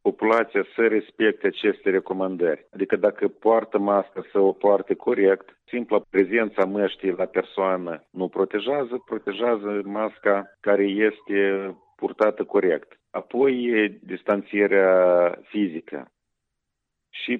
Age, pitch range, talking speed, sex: 50-69, 95-105 Hz, 105 wpm, male